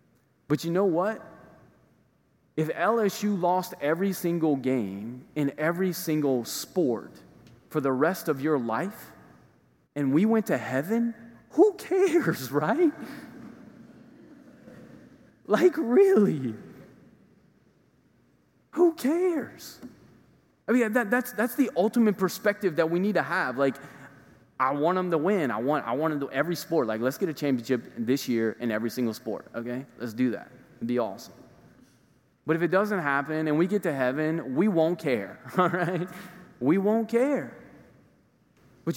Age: 20-39